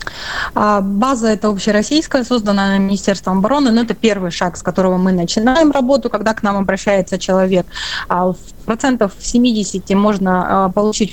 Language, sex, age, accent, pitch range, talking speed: Russian, female, 20-39, native, 185-225 Hz, 130 wpm